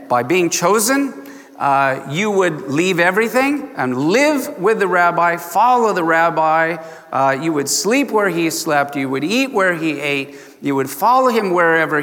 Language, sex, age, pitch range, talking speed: English, male, 50-69, 135-190 Hz, 170 wpm